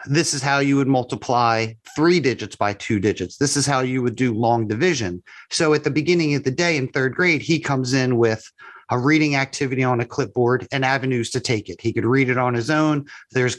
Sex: male